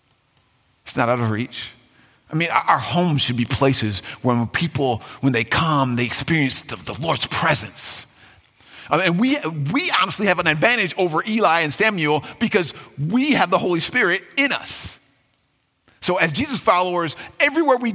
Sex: male